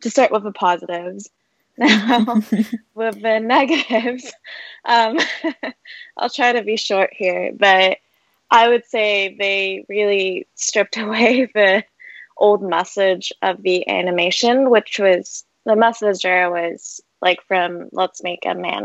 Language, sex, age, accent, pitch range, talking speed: English, female, 20-39, American, 185-230 Hz, 135 wpm